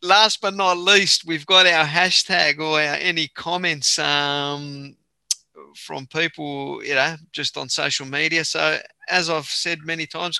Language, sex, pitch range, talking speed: English, male, 140-175 Hz, 155 wpm